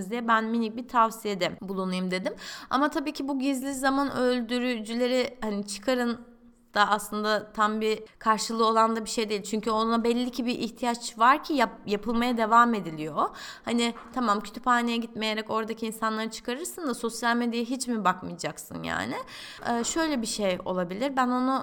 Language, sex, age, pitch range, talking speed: Turkish, female, 30-49, 210-270 Hz, 165 wpm